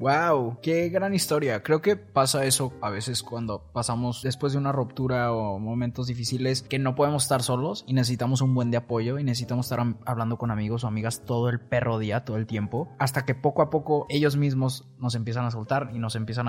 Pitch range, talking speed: 120-140 Hz, 215 wpm